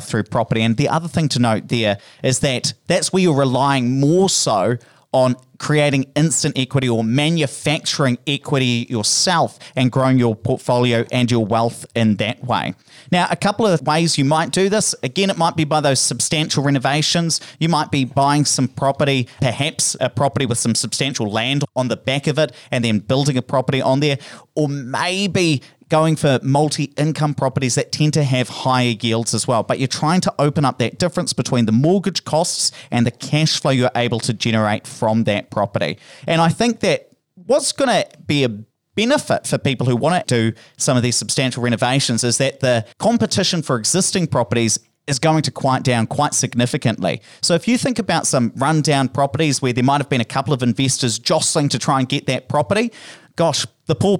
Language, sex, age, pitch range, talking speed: English, male, 30-49, 125-155 Hz, 195 wpm